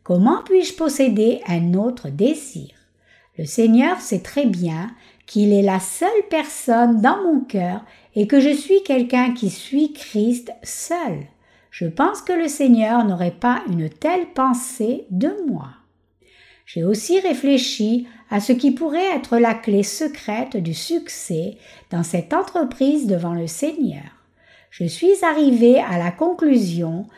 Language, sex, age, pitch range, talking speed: French, female, 60-79, 190-295 Hz, 145 wpm